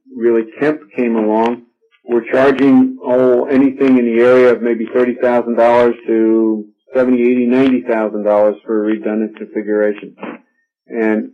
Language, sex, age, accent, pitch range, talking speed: English, male, 50-69, American, 115-135 Hz, 145 wpm